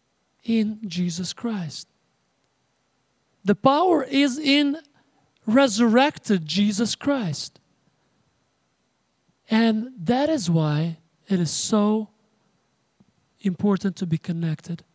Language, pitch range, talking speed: English, 165-230 Hz, 85 wpm